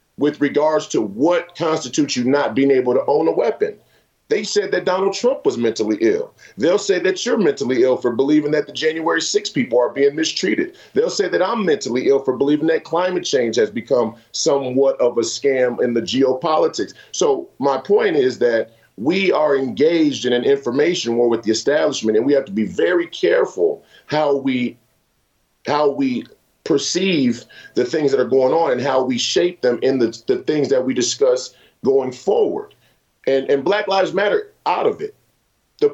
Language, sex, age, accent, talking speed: English, male, 40-59, American, 190 wpm